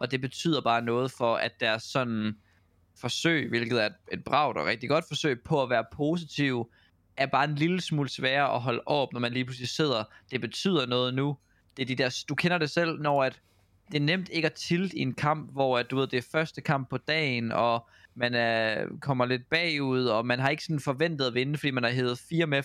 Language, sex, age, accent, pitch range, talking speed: Danish, male, 20-39, native, 120-155 Hz, 235 wpm